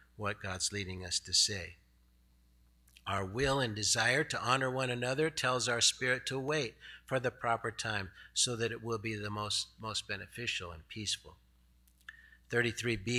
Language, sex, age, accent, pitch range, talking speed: English, male, 50-69, American, 105-145 Hz, 160 wpm